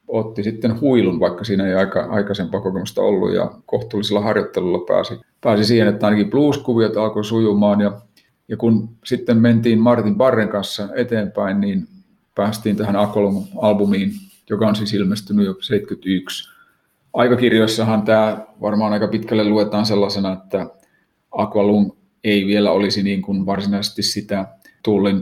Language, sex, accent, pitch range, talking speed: Finnish, male, native, 100-110 Hz, 135 wpm